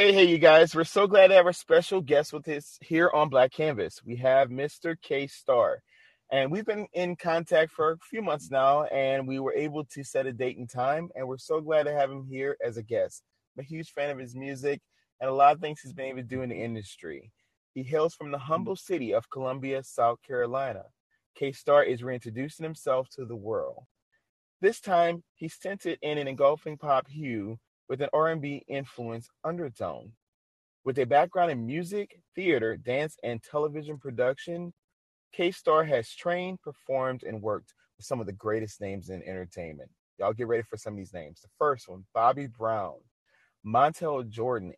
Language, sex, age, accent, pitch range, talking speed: English, male, 30-49, American, 125-160 Hz, 195 wpm